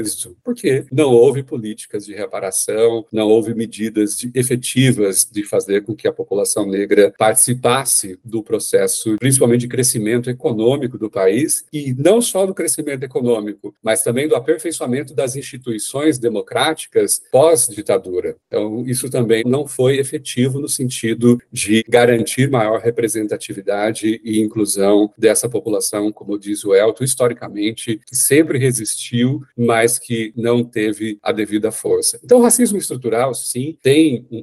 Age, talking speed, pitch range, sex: 40-59, 140 wpm, 110-150 Hz, male